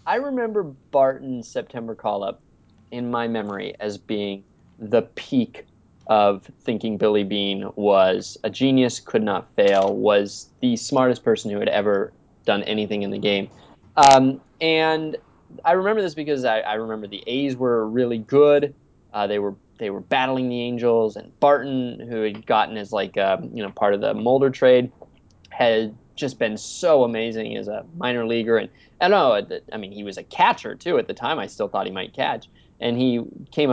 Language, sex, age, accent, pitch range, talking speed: English, male, 20-39, American, 110-150 Hz, 180 wpm